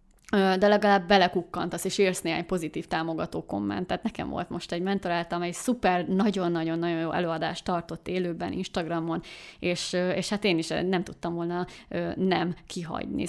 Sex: female